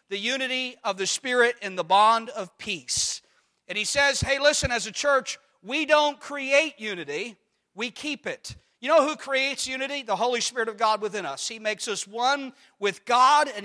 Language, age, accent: English, 40-59, American